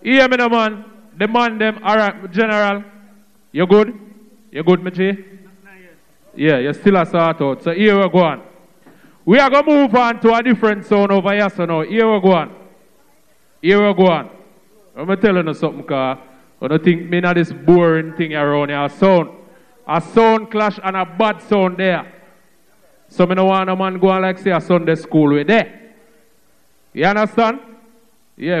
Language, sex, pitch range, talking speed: English, male, 175-215 Hz, 200 wpm